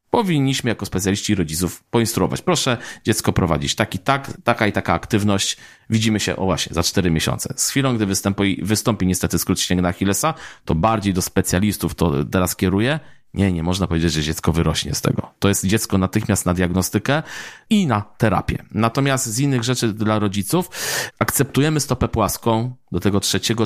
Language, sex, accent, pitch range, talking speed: Polish, male, native, 95-115 Hz, 170 wpm